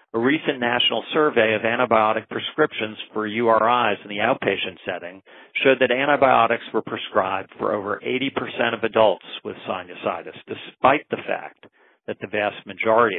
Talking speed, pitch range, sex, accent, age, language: 145 wpm, 105-130 Hz, male, American, 40-59, English